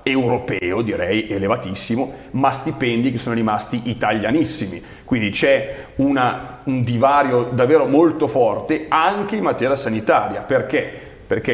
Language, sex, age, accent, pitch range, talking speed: Italian, male, 40-59, native, 115-160 Hz, 120 wpm